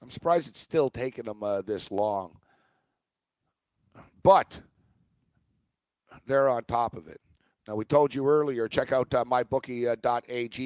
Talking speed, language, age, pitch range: 135 wpm, English, 50-69, 130-150 Hz